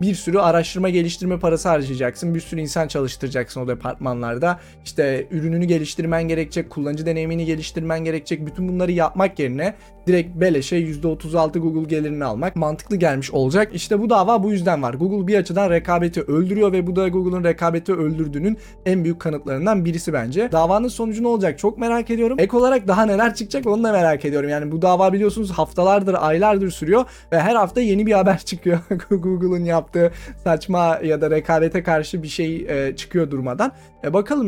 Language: Turkish